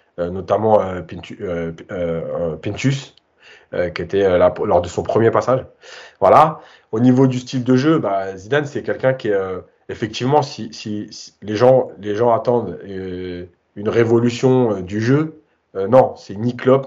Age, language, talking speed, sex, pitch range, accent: 30-49, French, 180 wpm, male, 95-130 Hz, French